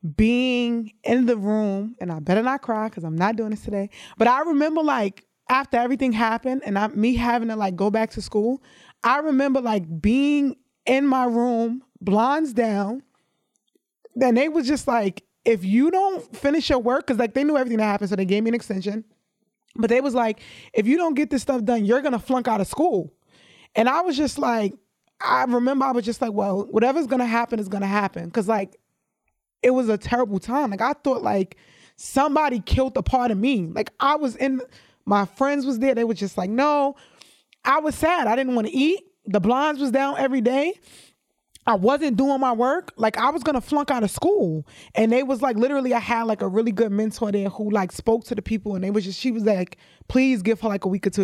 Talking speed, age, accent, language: 230 wpm, 20-39, American, English